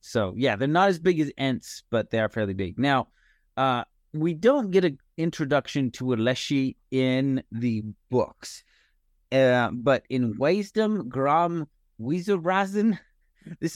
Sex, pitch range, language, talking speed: male, 115-145 Hz, English, 140 wpm